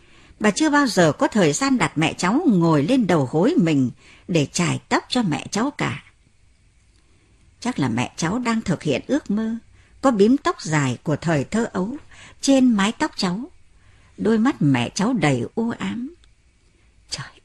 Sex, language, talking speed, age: male, Vietnamese, 175 wpm, 60-79